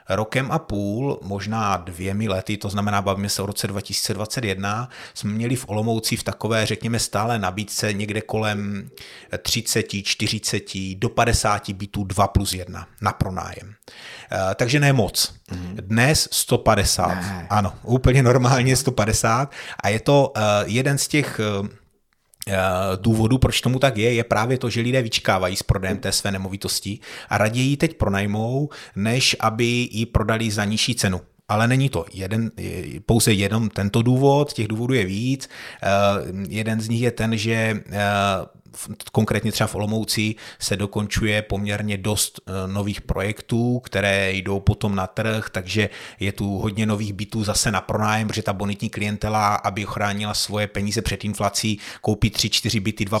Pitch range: 100-115 Hz